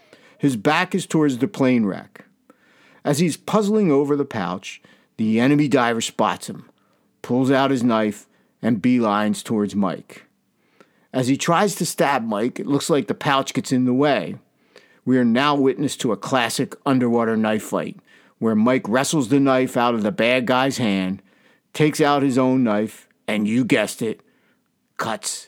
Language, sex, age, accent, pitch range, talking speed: English, male, 50-69, American, 110-140 Hz, 170 wpm